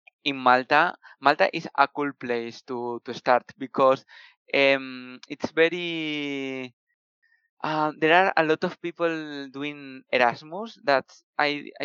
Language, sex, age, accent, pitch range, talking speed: English, male, 20-39, Spanish, 130-145 Hz, 120 wpm